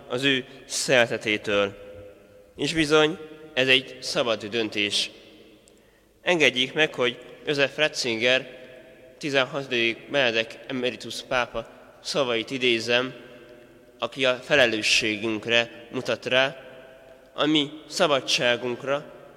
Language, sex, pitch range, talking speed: Hungarian, male, 115-145 Hz, 85 wpm